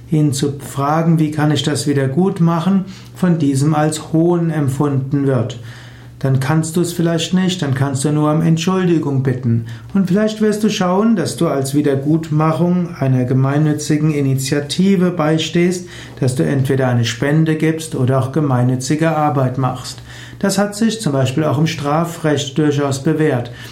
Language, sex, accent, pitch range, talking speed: German, male, German, 135-165 Hz, 155 wpm